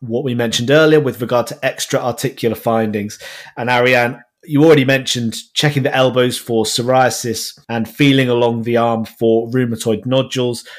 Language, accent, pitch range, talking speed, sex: English, British, 115-135 Hz, 155 wpm, male